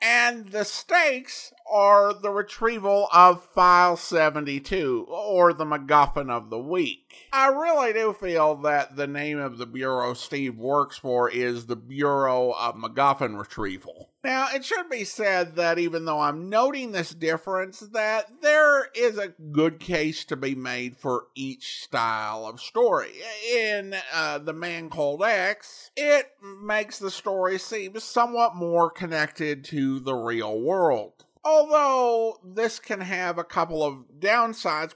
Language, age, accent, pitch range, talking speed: English, 50-69, American, 145-220 Hz, 150 wpm